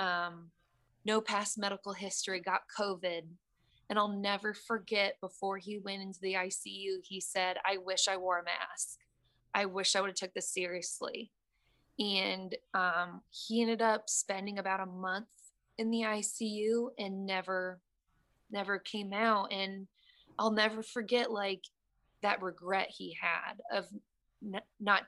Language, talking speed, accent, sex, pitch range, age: English, 145 wpm, American, female, 185-210 Hz, 20-39